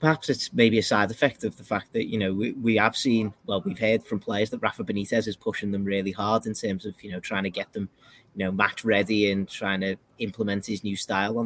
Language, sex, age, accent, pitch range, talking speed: English, male, 30-49, British, 95-110 Hz, 260 wpm